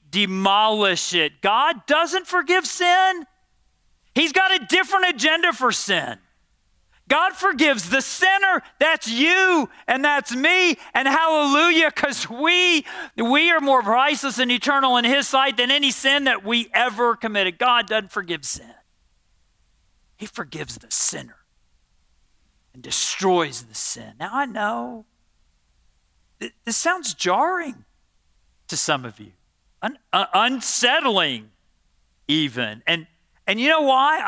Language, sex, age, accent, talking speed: English, male, 40-59, American, 125 wpm